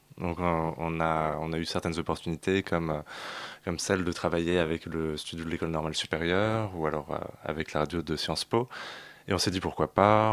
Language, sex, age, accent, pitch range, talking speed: French, male, 20-39, French, 80-95 Hz, 200 wpm